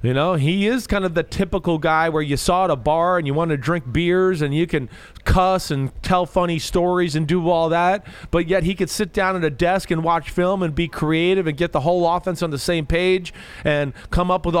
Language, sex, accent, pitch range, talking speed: English, male, American, 160-190 Hz, 250 wpm